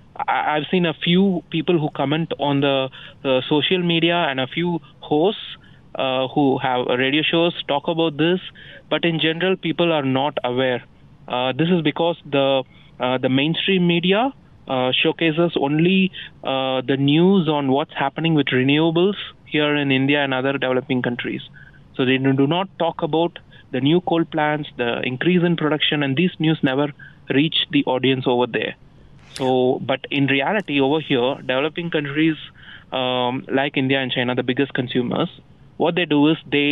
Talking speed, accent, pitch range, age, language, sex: 165 wpm, Indian, 130-160 Hz, 20-39, English, male